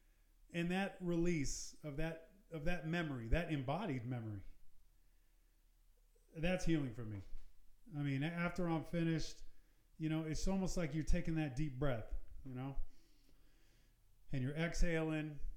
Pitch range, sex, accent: 120-160 Hz, male, American